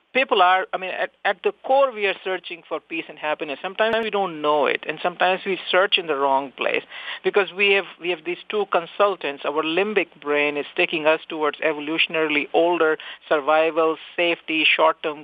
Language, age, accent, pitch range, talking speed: English, 50-69, Indian, 150-190 Hz, 190 wpm